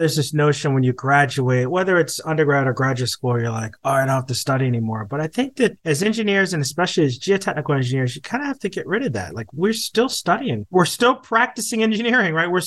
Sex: male